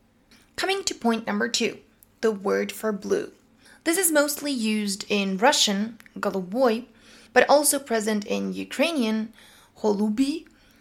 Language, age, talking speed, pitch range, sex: English, 20-39, 120 wpm, 200-265 Hz, female